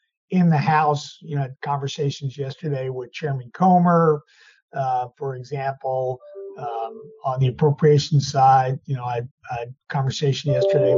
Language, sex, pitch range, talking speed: English, male, 130-155 Hz, 140 wpm